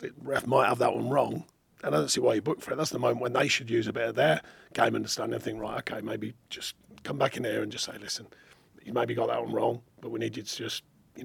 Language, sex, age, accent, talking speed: English, male, 40-59, British, 295 wpm